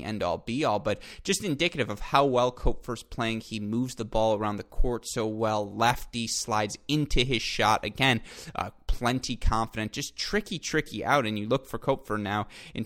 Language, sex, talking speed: English, male, 180 wpm